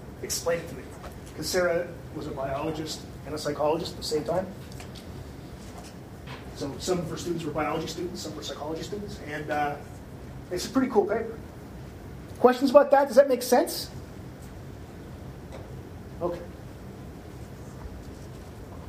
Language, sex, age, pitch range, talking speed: English, male, 30-49, 170-265 Hz, 140 wpm